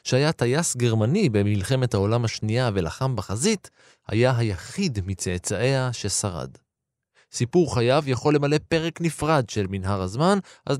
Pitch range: 105-150 Hz